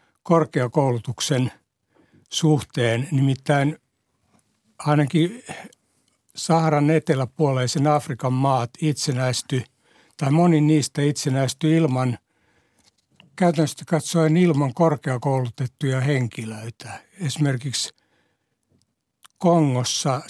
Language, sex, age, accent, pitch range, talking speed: Finnish, male, 60-79, native, 130-155 Hz, 60 wpm